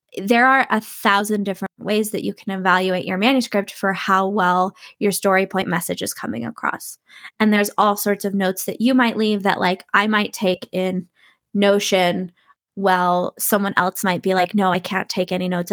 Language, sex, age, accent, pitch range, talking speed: English, female, 20-39, American, 185-210 Hz, 195 wpm